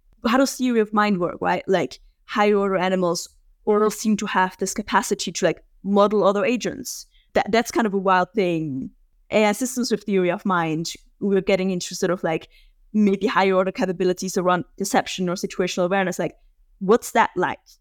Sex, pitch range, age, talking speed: female, 185-220 Hz, 20-39, 180 wpm